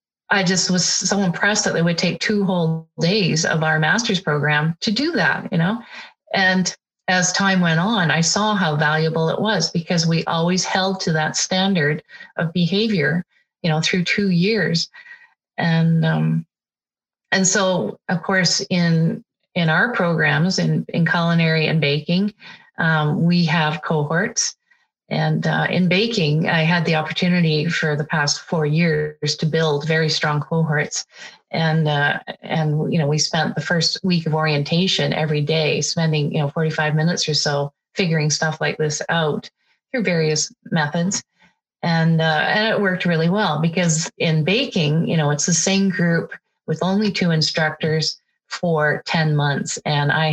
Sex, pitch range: female, 155-185 Hz